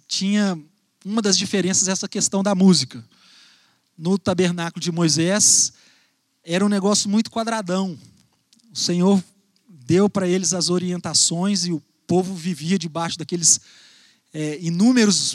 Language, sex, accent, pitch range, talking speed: Portuguese, male, Brazilian, 165-200 Hz, 125 wpm